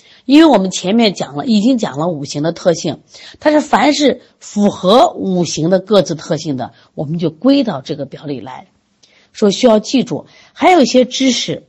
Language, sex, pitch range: Chinese, female, 160-265 Hz